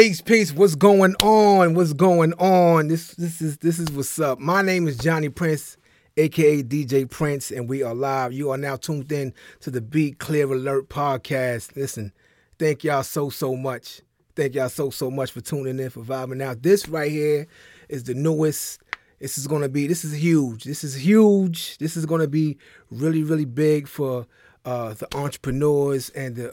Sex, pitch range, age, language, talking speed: male, 135-165 Hz, 30-49, English, 190 wpm